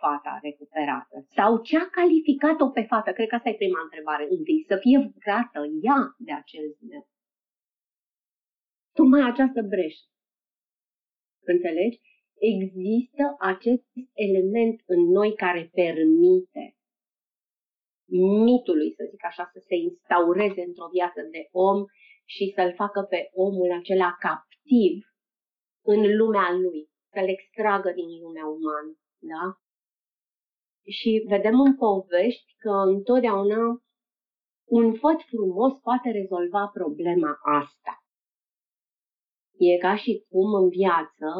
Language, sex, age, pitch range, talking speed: Romanian, female, 30-49, 175-230 Hz, 115 wpm